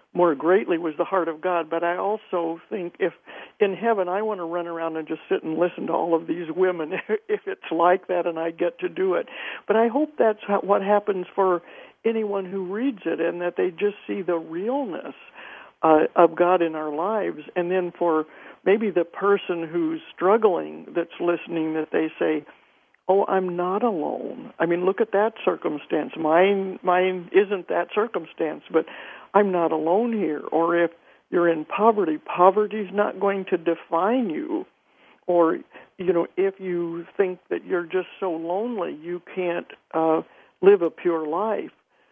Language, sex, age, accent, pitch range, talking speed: English, male, 60-79, American, 165-200 Hz, 180 wpm